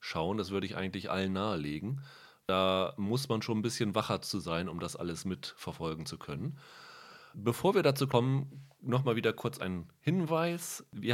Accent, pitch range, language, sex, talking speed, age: German, 100-125 Hz, German, male, 170 wpm, 30-49